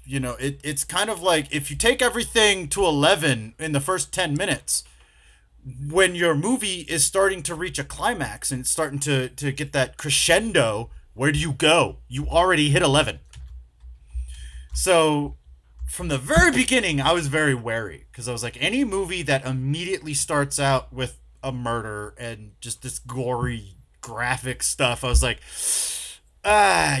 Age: 30-49